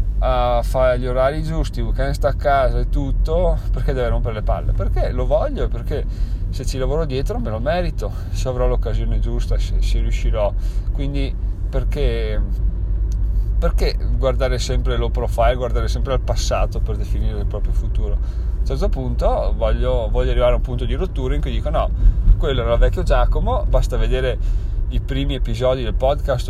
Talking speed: 180 wpm